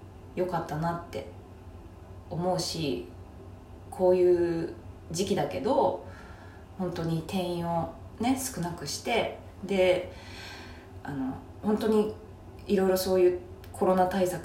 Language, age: Japanese, 20-39